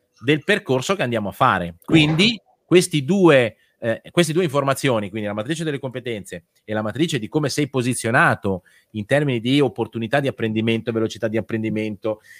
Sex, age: male, 30-49